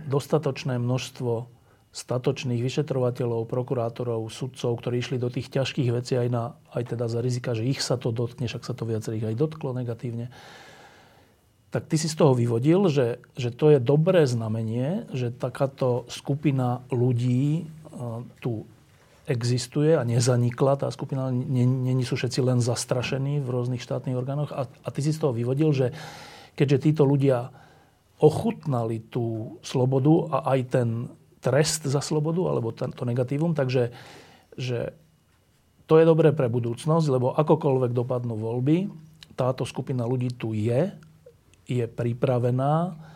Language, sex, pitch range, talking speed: Slovak, male, 120-145 Hz, 140 wpm